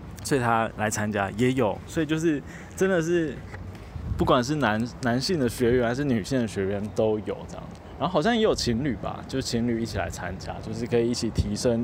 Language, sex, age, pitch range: Chinese, male, 20-39, 100-135 Hz